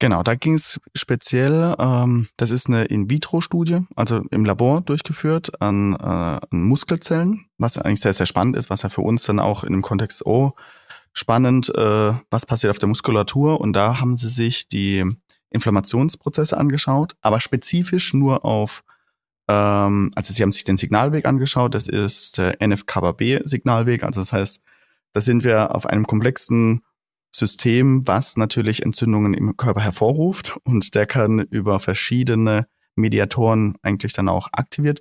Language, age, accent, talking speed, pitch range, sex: German, 30-49, German, 160 wpm, 100-130 Hz, male